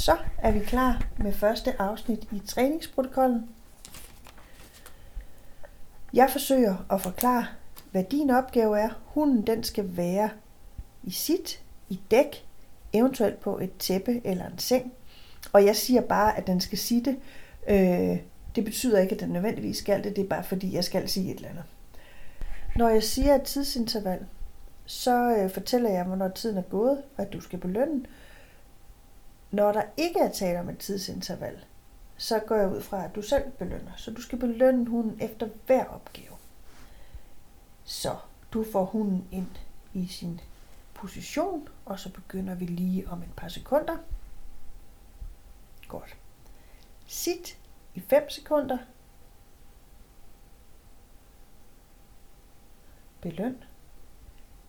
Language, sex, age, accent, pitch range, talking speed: Danish, female, 30-49, native, 195-255 Hz, 135 wpm